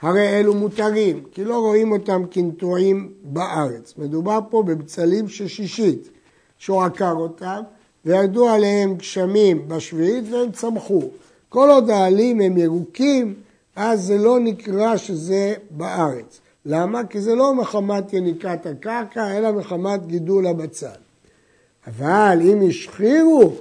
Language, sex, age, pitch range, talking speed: Hebrew, male, 60-79, 170-225 Hz, 120 wpm